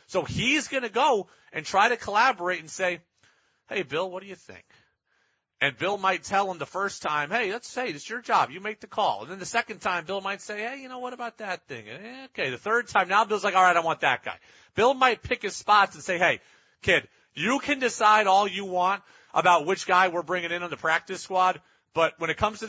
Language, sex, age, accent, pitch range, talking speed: English, male, 40-59, American, 170-215 Hz, 255 wpm